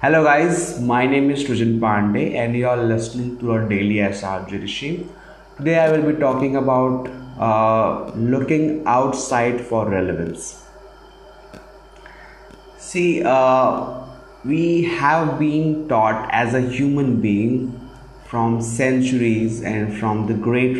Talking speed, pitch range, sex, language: 125 wpm, 115-135 Hz, male, English